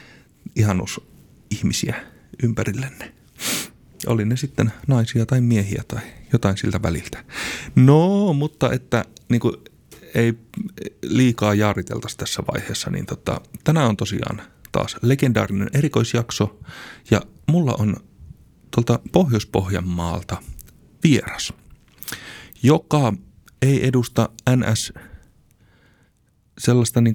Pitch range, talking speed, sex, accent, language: 100-130 Hz, 85 wpm, male, native, Finnish